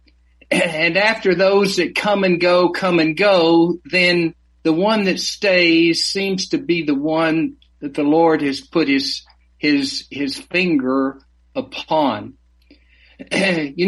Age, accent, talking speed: 50-69, American, 135 wpm